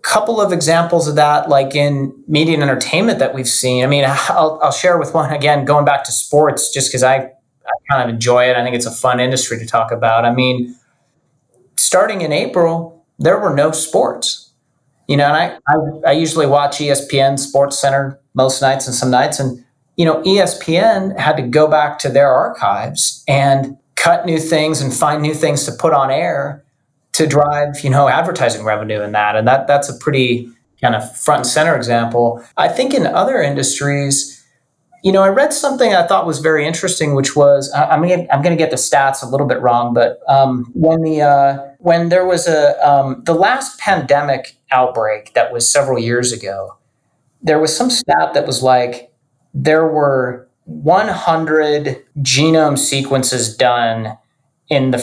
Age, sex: 30-49, male